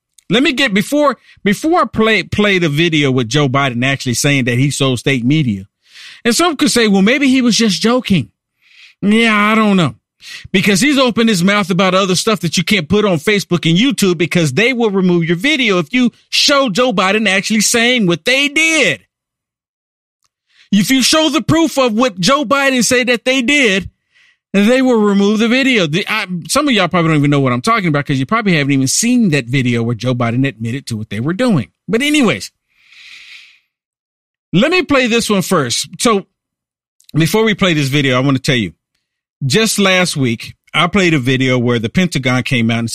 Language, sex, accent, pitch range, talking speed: English, male, American, 145-235 Hz, 200 wpm